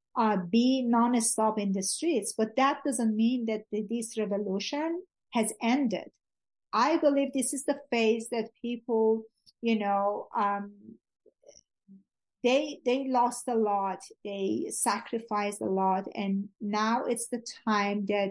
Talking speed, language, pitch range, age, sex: 135 wpm, English, 205-245 Hz, 50-69, female